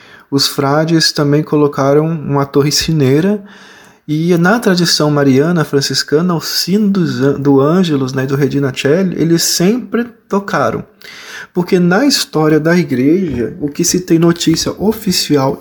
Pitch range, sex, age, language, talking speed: 145-195 Hz, male, 20-39, Portuguese, 130 wpm